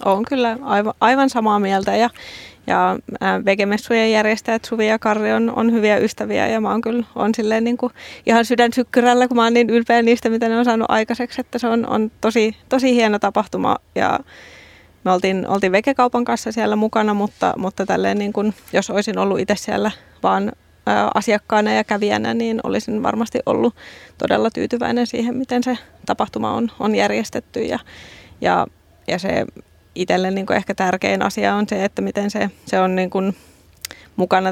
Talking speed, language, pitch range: 170 wpm, Finnish, 200-235 Hz